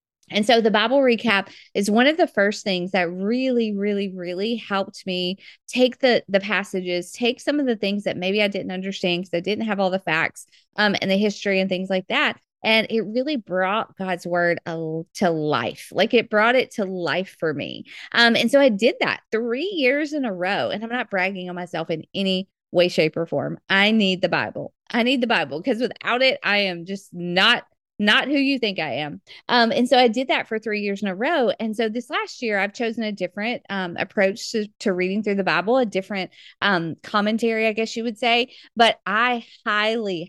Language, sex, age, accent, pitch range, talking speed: English, female, 30-49, American, 185-235 Hz, 220 wpm